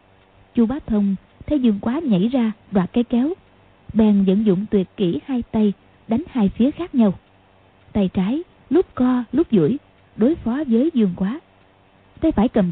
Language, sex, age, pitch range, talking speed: Vietnamese, female, 20-39, 180-255 Hz, 175 wpm